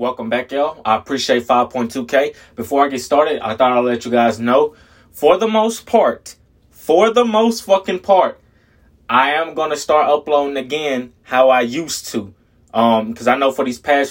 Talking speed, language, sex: 185 wpm, English, male